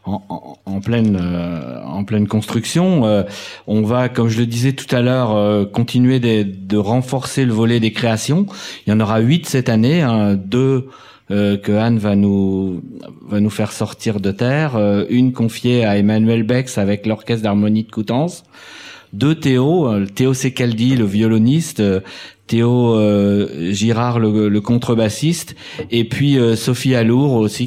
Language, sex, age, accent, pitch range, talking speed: French, male, 40-59, French, 105-130 Hz, 170 wpm